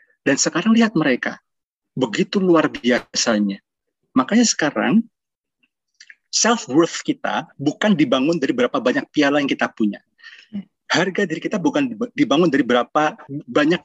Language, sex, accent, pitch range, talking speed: Indonesian, male, native, 125-180 Hz, 120 wpm